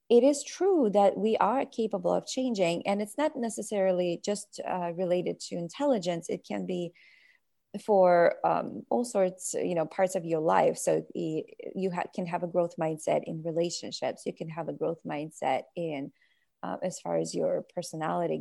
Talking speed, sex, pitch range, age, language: 175 wpm, female, 180-225 Hz, 30-49, English